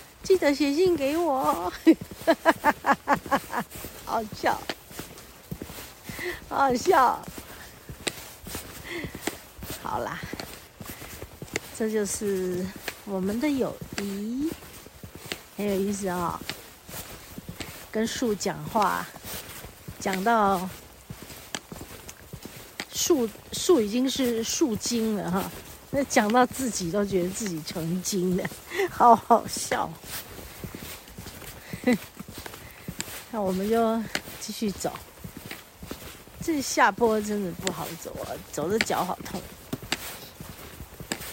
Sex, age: female, 50-69